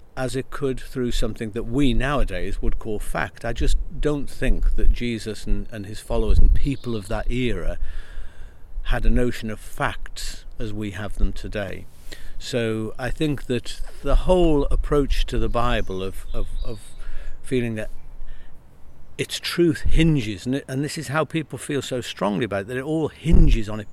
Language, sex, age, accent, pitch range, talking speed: English, male, 50-69, British, 105-135 Hz, 180 wpm